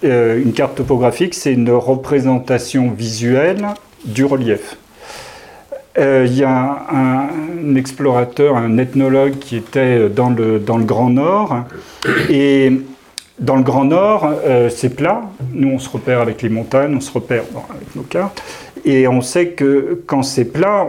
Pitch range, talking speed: 125-150 Hz, 160 wpm